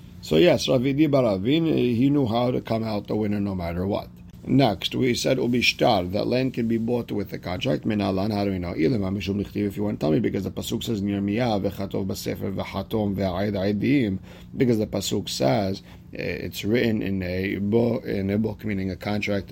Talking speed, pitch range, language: 155 wpm, 95-115 Hz, English